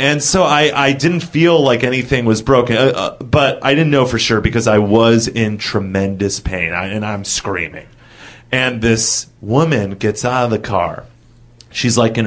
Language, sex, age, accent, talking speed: English, male, 30-49, American, 185 wpm